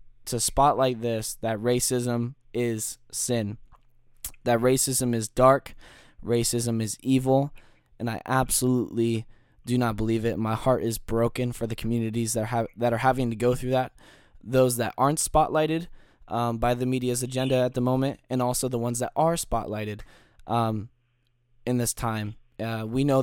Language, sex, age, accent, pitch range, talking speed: English, male, 10-29, American, 115-130 Hz, 165 wpm